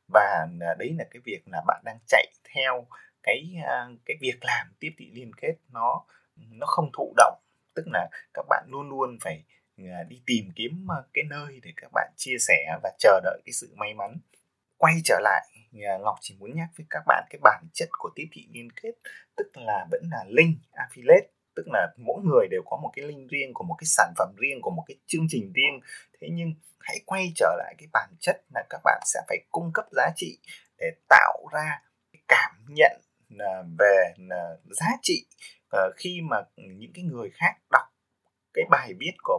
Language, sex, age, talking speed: Vietnamese, male, 20-39, 200 wpm